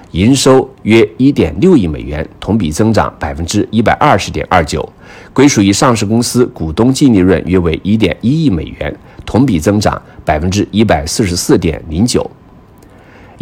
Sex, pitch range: male, 85-115 Hz